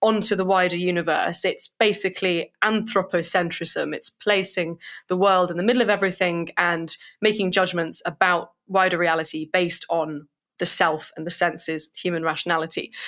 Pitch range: 170-205 Hz